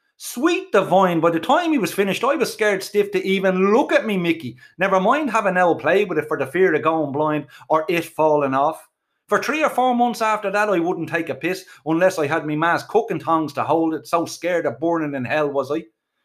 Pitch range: 160-235 Hz